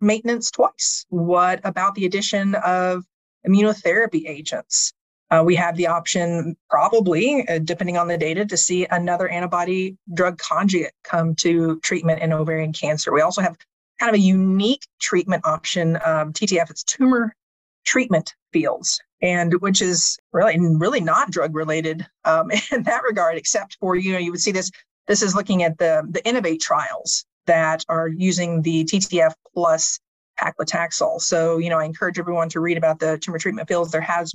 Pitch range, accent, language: 160-190 Hz, American, English